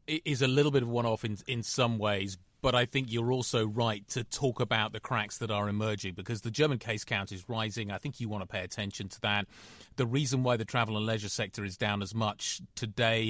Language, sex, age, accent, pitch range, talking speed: English, male, 30-49, British, 100-120 Hz, 245 wpm